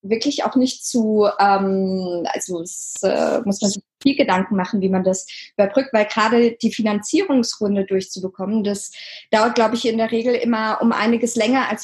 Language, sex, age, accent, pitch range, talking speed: German, female, 20-39, German, 195-235 Hz, 175 wpm